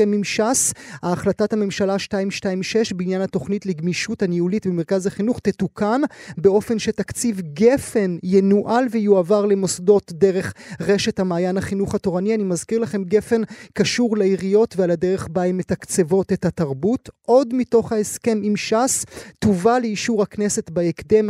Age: 30-49